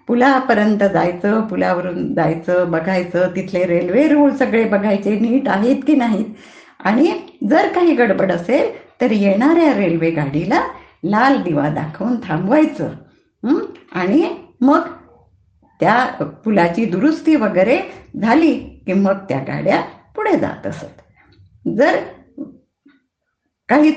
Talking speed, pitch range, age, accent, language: 110 wpm, 195-310 Hz, 50-69, native, Marathi